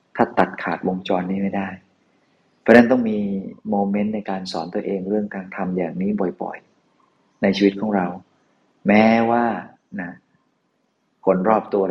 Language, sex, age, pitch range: Thai, male, 20-39, 90-105 Hz